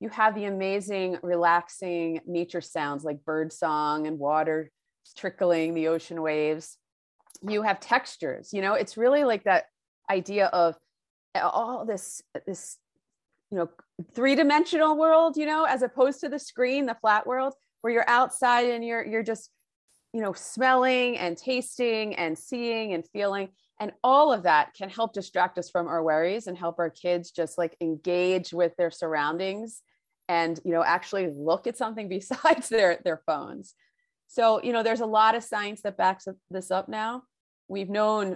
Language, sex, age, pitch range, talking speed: English, female, 30-49, 165-230 Hz, 165 wpm